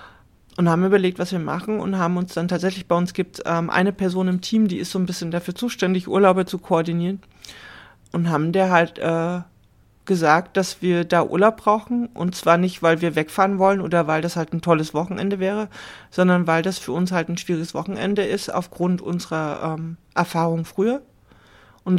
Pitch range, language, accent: 170-195 Hz, German, German